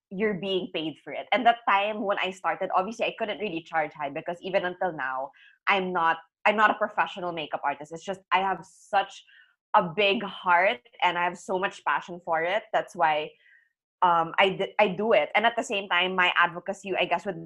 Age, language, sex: 20-39, English, female